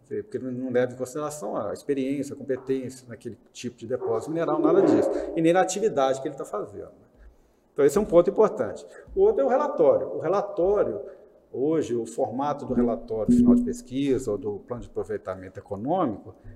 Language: Portuguese